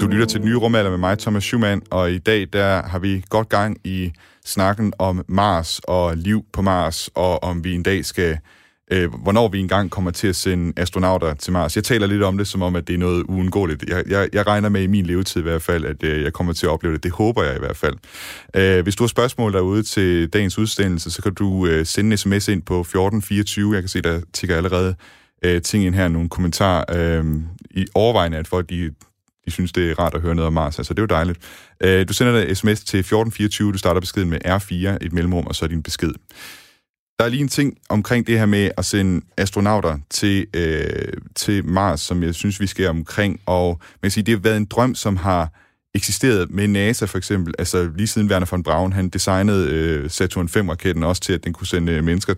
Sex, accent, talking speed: male, native, 235 wpm